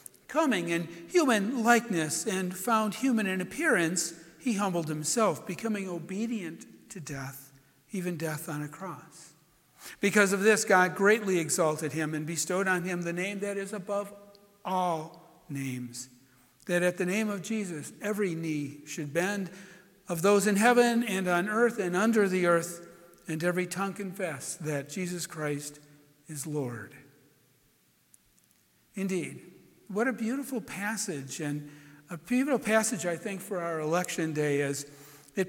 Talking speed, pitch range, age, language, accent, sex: 145 wpm, 160-220 Hz, 60-79, English, American, male